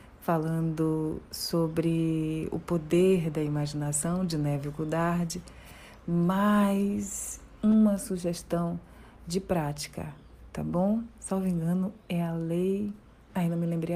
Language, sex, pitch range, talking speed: Portuguese, female, 160-190 Hz, 110 wpm